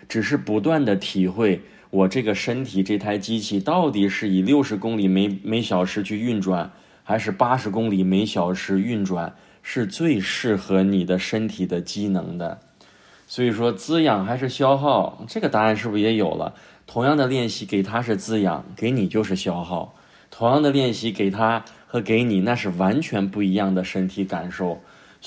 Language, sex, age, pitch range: Chinese, male, 20-39, 95-115 Hz